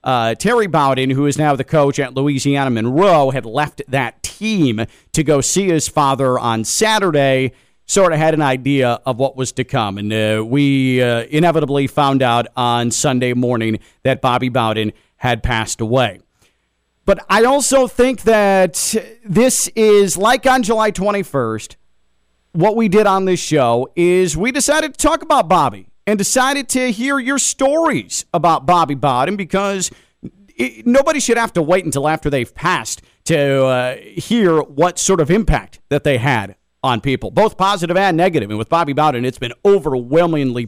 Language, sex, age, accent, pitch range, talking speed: English, male, 40-59, American, 125-195 Hz, 170 wpm